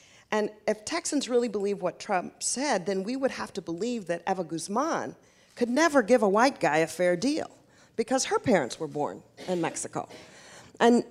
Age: 40-59